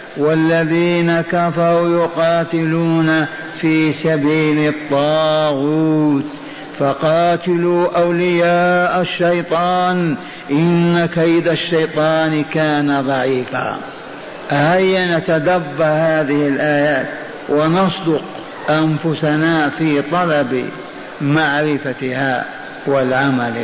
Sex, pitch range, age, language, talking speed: male, 155-195 Hz, 50-69, Arabic, 60 wpm